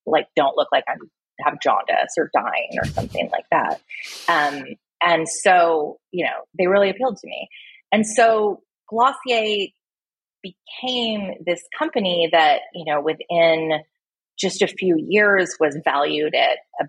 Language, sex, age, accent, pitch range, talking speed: English, female, 30-49, American, 155-205 Hz, 145 wpm